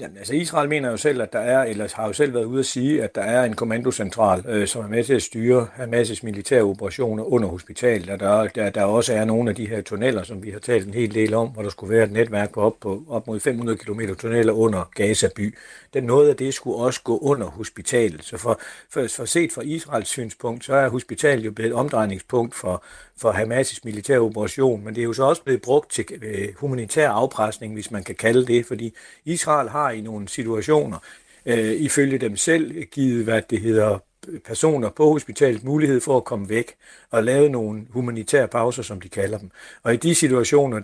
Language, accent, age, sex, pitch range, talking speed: Danish, native, 60-79, male, 110-140 Hz, 215 wpm